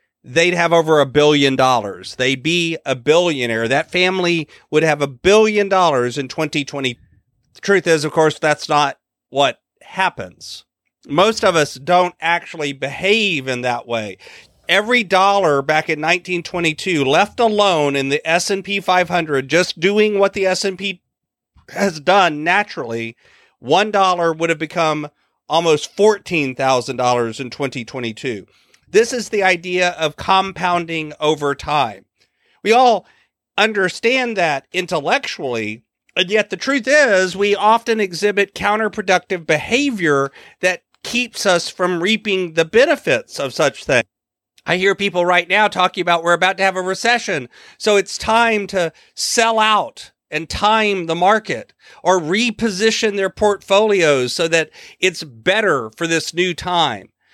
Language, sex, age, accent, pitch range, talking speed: English, male, 40-59, American, 150-200 Hz, 140 wpm